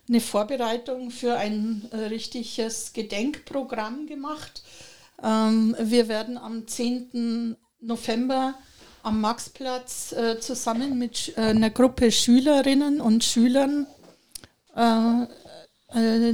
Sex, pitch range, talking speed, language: female, 220-250 Hz, 100 wpm, German